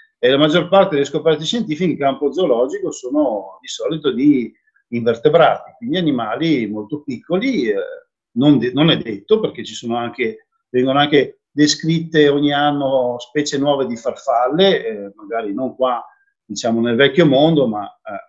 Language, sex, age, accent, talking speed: Italian, male, 50-69, native, 160 wpm